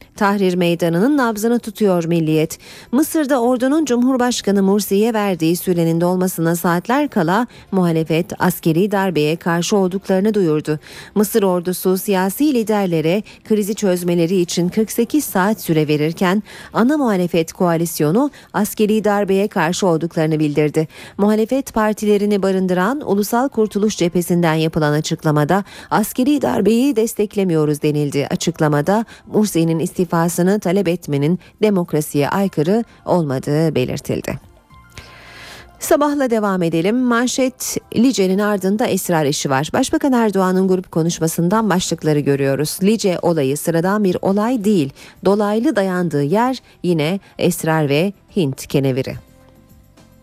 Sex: female